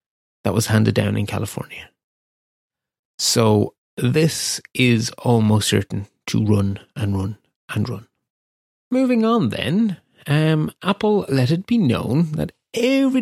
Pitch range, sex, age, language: 110-160 Hz, male, 30-49, English